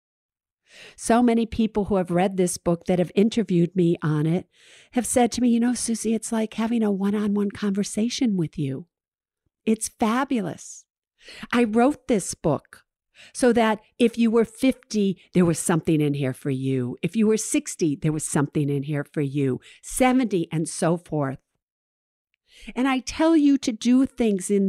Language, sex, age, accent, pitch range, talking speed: English, female, 50-69, American, 160-230 Hz, 175 wpm